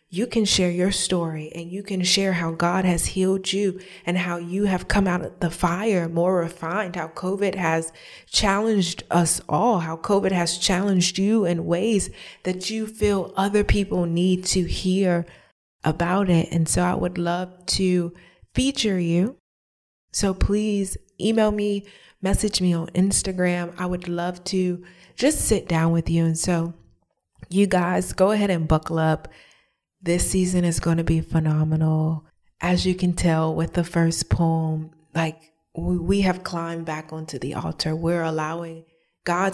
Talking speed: 165 wpm